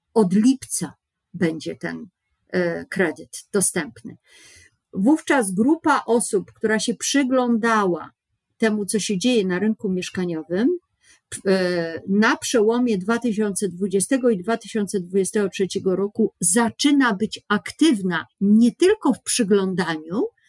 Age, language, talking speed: 50-69, Polish, 95 wpm